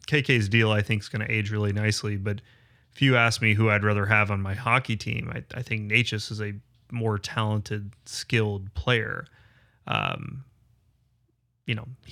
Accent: American